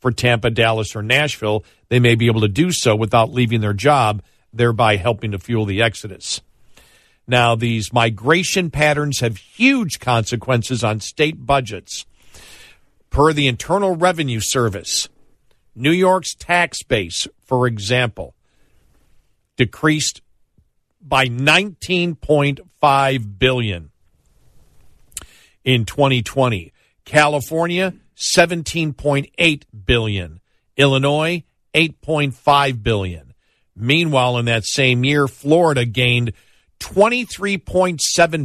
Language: English